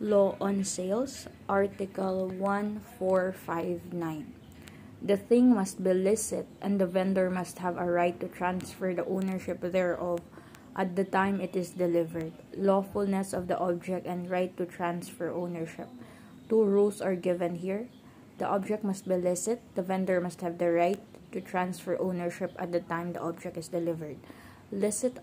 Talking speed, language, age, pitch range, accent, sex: 150 wpm, English, 20-39, 170-195 Hz, Filipino, female